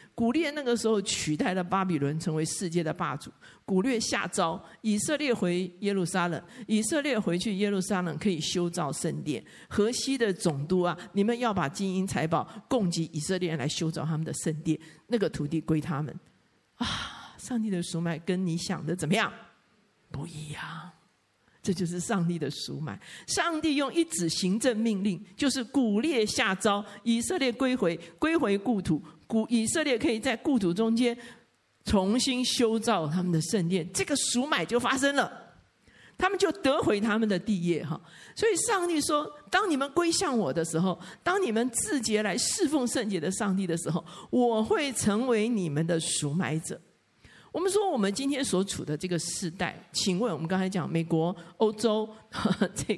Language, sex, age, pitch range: Chinese, male, 50-69, 170-245 Hz